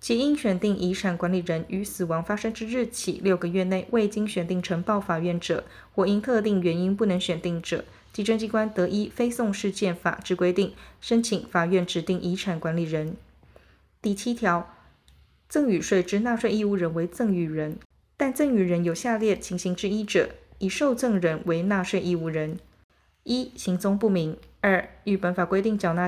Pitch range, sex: 175-220 Hz, female